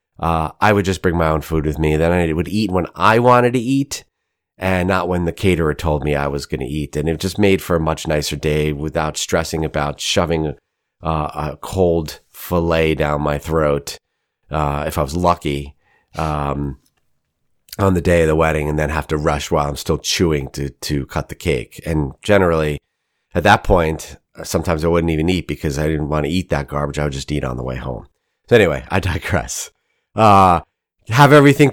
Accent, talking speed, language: American, 210 wpm, English